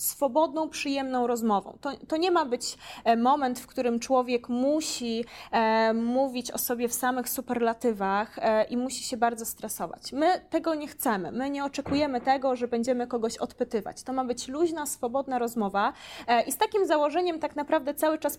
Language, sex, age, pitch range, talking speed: English, female, 20-39, 220-275 Hz, 165 wpm